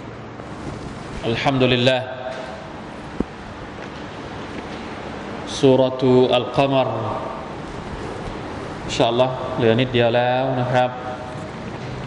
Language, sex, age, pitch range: Thai, male, 20-39, 115-140 Hz